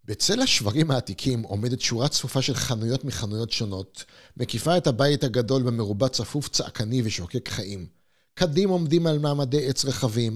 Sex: male